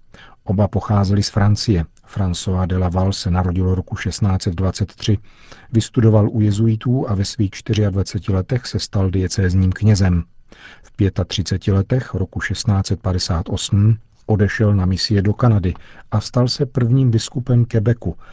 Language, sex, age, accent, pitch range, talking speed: Czech, male, 50-69, native, 95-110 Hz, 130 wpm